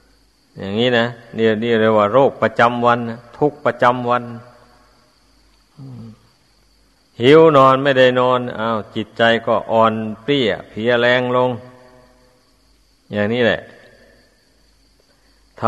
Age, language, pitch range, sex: 60-79, Thai, 115-130 Hz, male